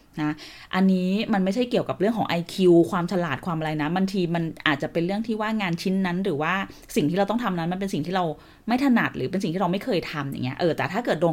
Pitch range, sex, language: 155-200 Hz, female, Thai